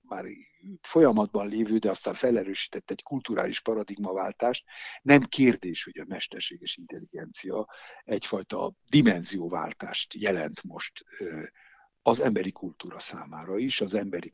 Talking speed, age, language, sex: 110 wpm, 60-79, Hungarian, male